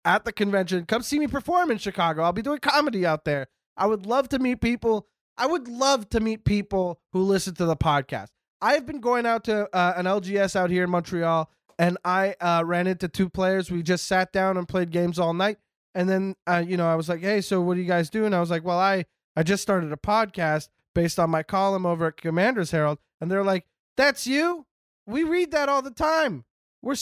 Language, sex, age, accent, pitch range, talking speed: English, male, 20-39, American, 175-225 Hz, 235 wpm